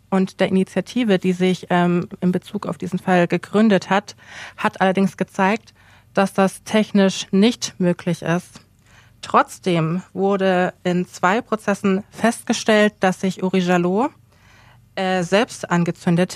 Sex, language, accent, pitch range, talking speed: female, German, German, 175-195 Hz, 130 wpm